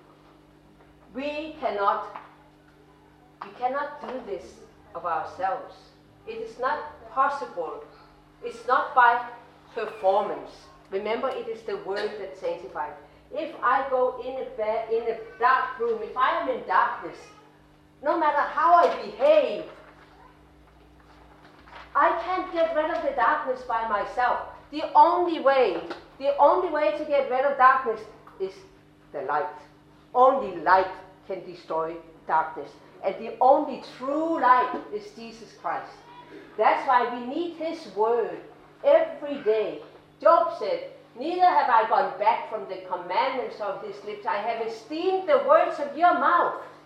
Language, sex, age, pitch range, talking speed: English, female, 50-69, 220-310 Hz, 140 wpm